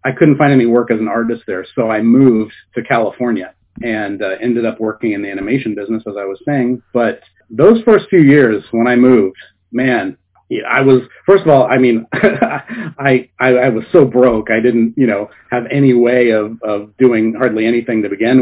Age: 40-59